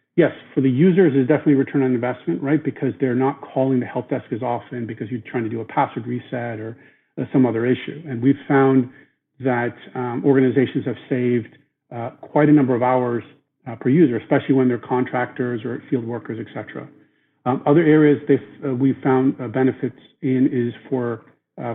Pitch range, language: 125-145 Hz, English